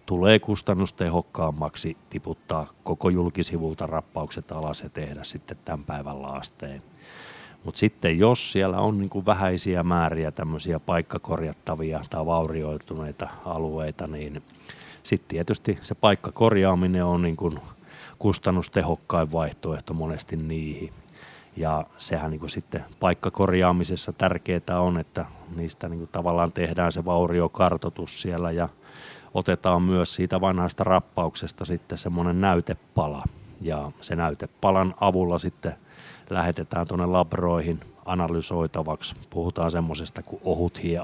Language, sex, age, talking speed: Finnish, male, 30-49, 110 wpm